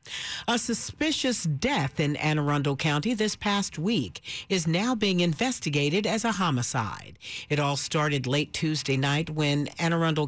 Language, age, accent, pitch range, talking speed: English, 50-69, American, 140-180 Hz, 150 wpm